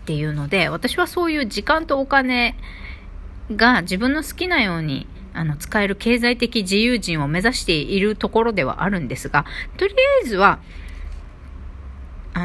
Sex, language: female, Japanese